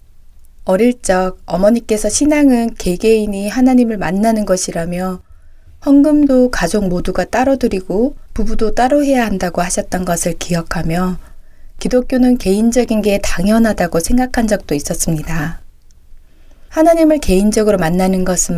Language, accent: Korean, native